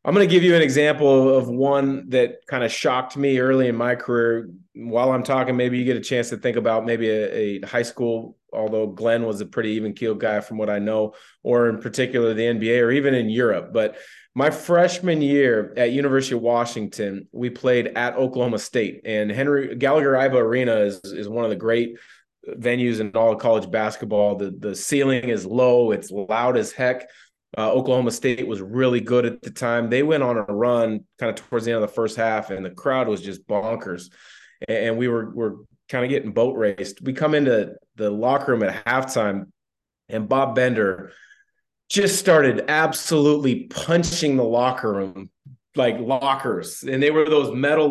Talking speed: 200 wpm